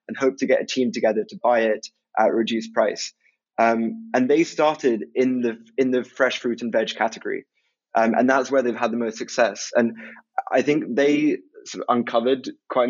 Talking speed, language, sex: 205 wpm, English, male